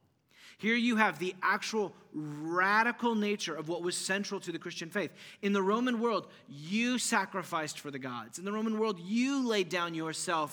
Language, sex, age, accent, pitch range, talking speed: English, male, 30-49, American, 150-190 Hz, 180 wpm